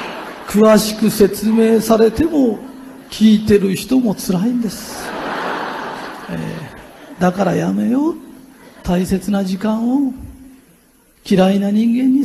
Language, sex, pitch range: Japanese, male, 180-260 Hz